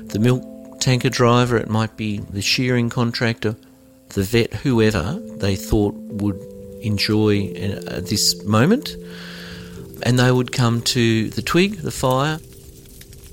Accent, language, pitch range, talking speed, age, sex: Australian, English, 100-120 Hz, 130 wpm, 50-69, male